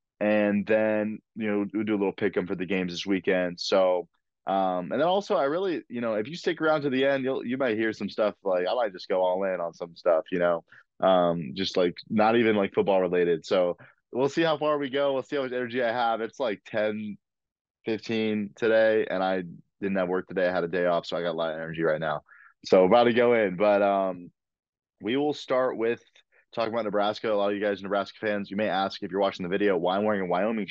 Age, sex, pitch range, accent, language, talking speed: 20-39, male, 95-110 Hz, American, English, 255 wpm